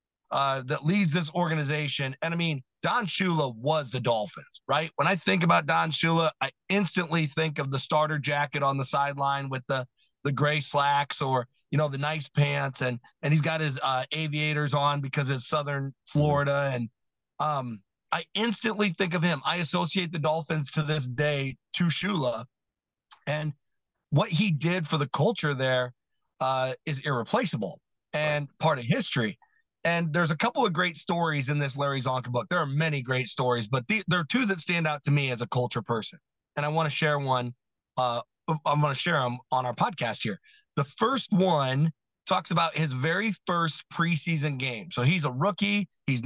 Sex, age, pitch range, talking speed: male, 40-59, 140-170 Hz, 190 wpm